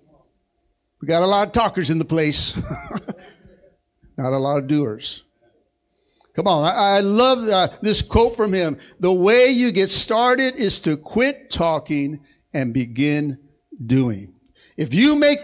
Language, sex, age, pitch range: English, male, 60-79, 170-235 Hz